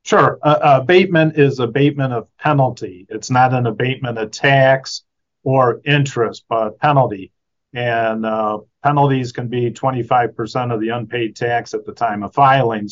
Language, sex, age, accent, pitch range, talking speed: English, male, 40-59, American, 110-125 Hz, 150 wpm